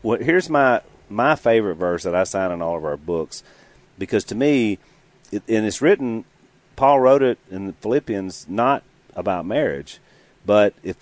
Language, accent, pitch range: English, American, 85-110 Hz